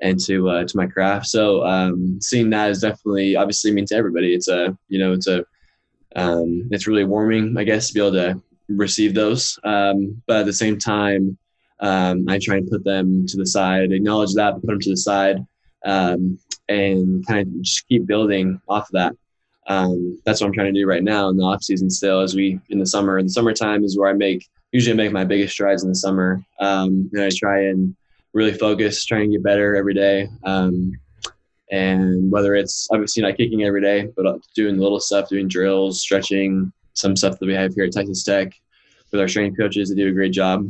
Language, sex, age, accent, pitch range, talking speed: English, male, 10-29, American, 95-105 Hz, 220 wpm